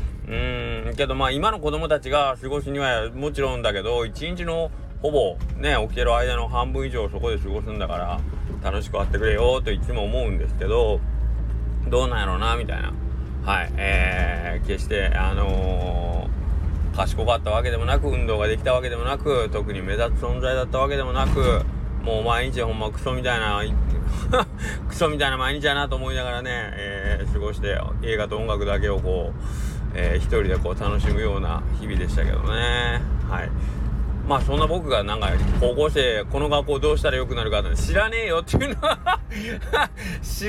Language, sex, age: Japanese, male, 20-39